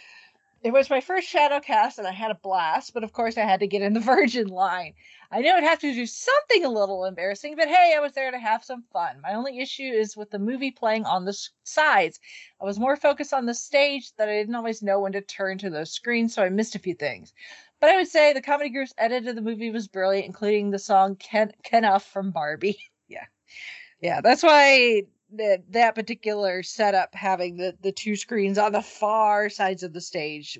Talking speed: 230 wpm